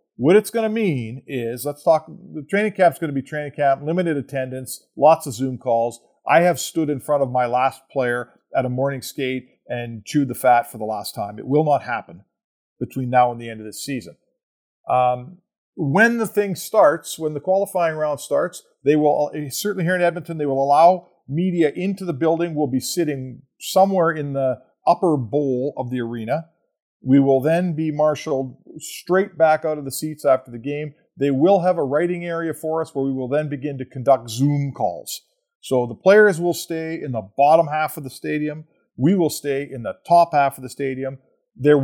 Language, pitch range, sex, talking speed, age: English, 135-170 Hz, male, 205 wpm, 50-69